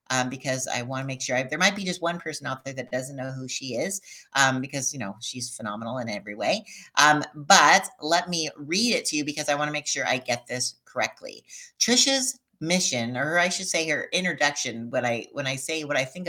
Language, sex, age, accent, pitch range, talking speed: English, female, 50-69, American, 130-190 Hz, 230 wpm